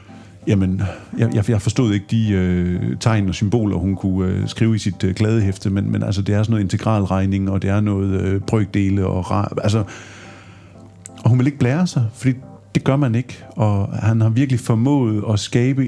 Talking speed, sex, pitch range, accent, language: 195 wpm, male, 100-115 Hz, native, Danish